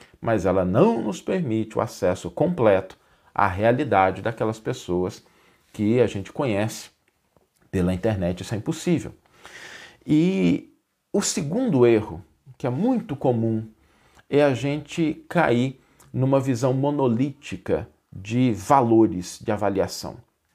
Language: Portuguese